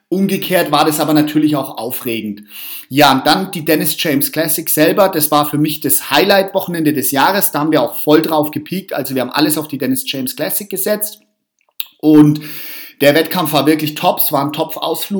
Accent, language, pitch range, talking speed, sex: German, German, 145-170 Hz, 195 wpm, male